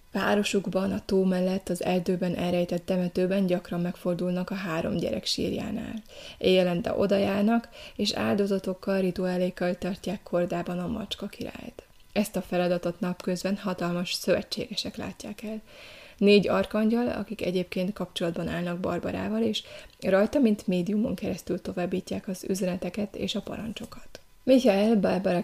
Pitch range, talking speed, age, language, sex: 175-205 Hz, 125 wpm, 20-39, Hungarian, female